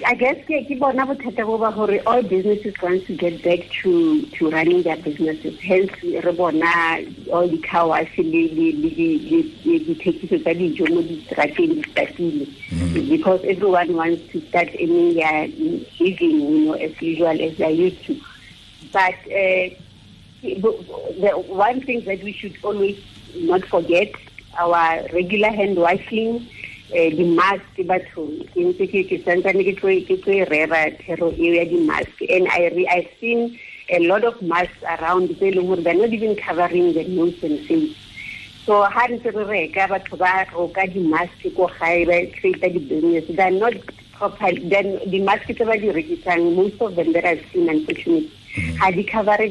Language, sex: English, female